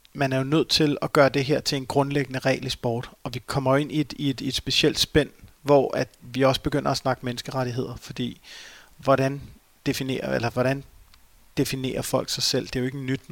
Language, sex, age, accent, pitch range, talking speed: Danish, male, 30-49, native, 115-135 Hz, 225 wpm